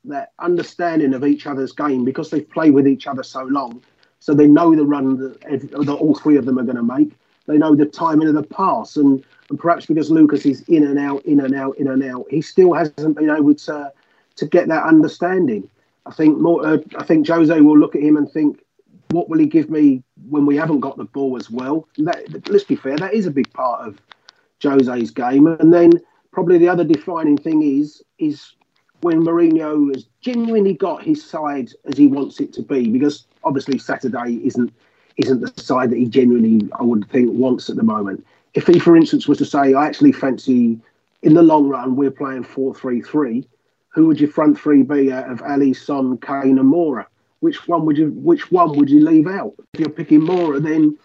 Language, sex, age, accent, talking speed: English, male, 30-49, British, 220 wpm